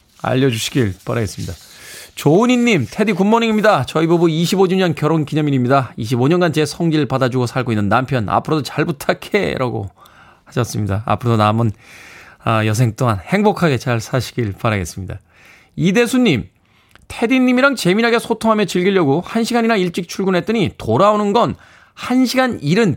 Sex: male